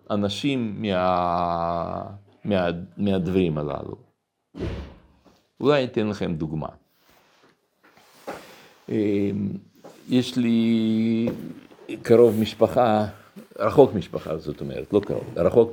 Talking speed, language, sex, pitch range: 85 wpm, Hebrew, male, 85-110 Hz